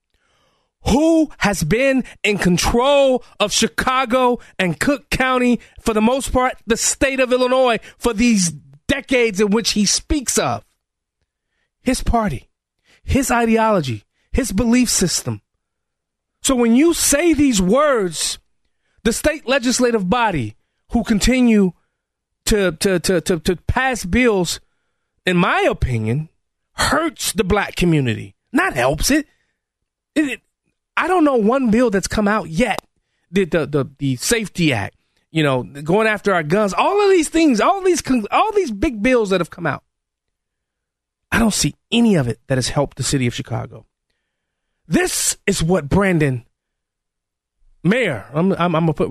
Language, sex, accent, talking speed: English, male, American, 150 wpm